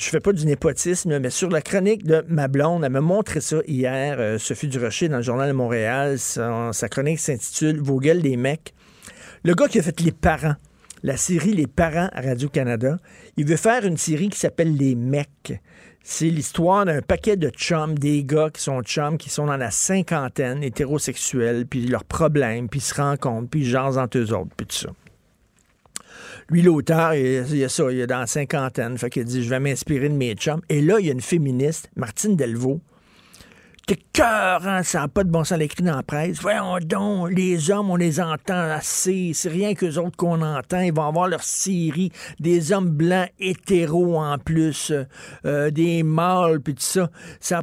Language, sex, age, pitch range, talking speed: French, male, 50-69, 135-175 Hz, 215 wpm